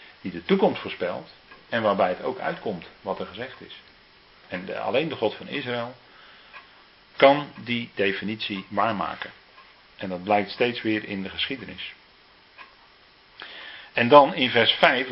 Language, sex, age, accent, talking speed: Dutch, male, 40-59, Dutch, 145 wpm